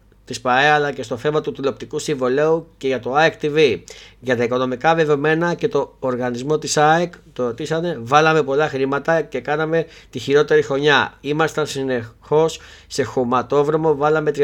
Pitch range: 125-155 Hz